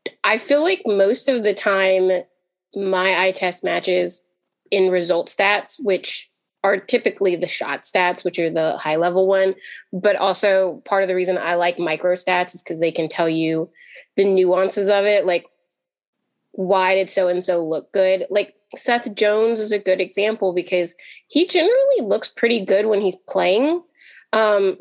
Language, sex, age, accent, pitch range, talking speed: English, female, 20-39, American, 180-210 Hz, 165 wpm